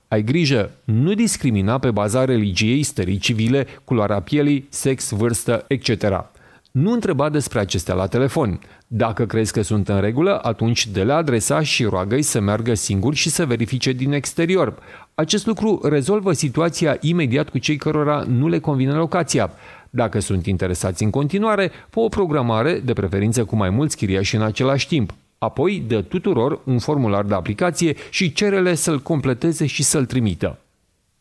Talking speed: 160 wpm